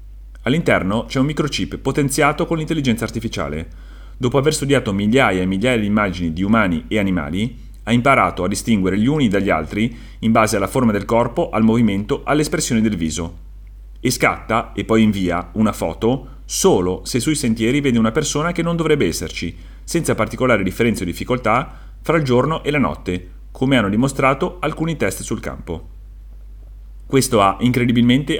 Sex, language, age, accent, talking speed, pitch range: male, Italian, 30-49, native, 165 wpm, 95-130 Hz